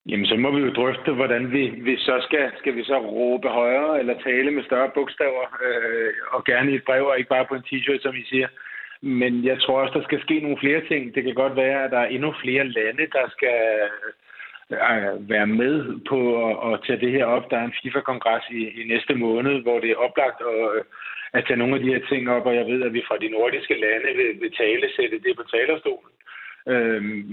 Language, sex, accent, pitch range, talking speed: Danish, male, native, 120-140 Hz, 235 wpm